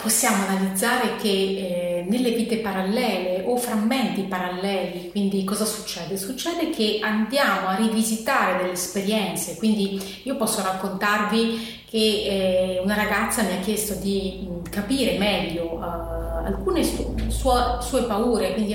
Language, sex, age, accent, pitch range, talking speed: Italian, female, 30-49, native, 195-235 Hz, 115 wpm